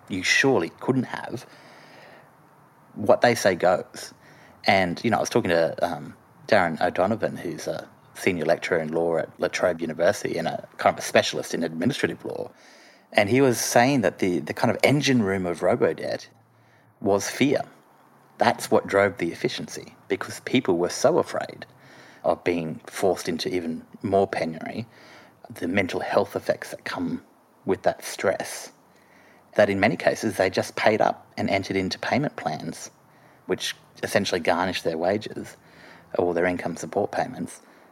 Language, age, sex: English, 30-49, male